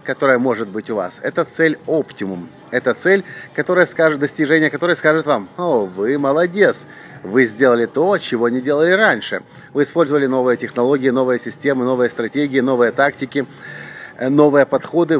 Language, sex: English, male